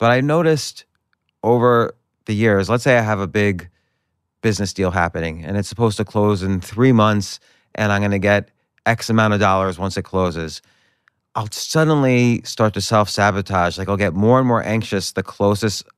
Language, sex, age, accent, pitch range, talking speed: English, male, 30-49, American, 100-115 Hz, 180 wpm